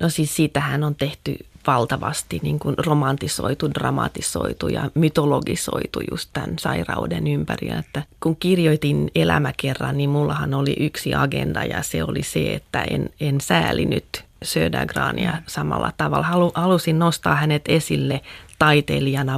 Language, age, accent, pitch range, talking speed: Finnish, 30-49, native, 135-170 Hz, 125 wpm